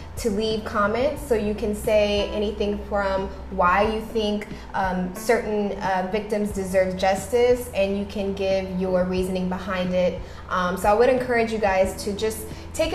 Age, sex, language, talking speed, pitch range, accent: 20-39, female, English, 165 wpm, 190-235 Hz, American